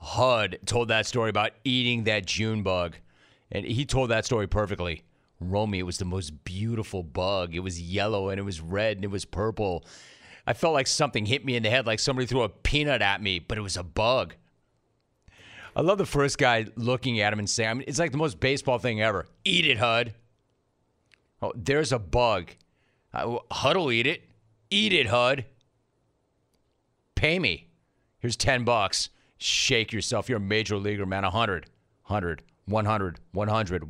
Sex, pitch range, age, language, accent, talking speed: male, 105-130 Hz, 30-49, English, American, 180 wpm